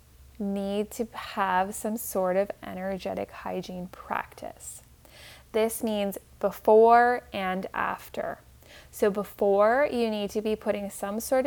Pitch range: 190-220 Hz